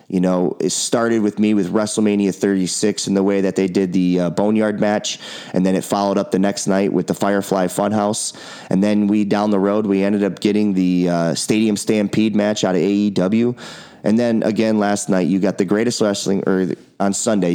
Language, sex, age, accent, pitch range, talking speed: English, male, 30-49, American, 95-110 Hz, 210 wpm